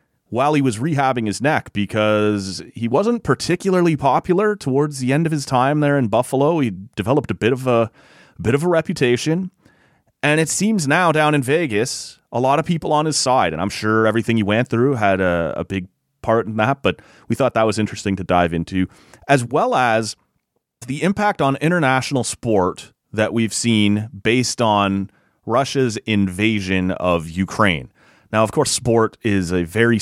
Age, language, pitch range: 30-49, English, 95-130 Hz